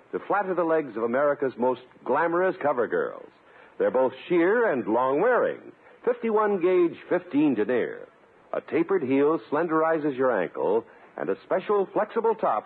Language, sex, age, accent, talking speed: English, male, 60-79, American, 145 wpm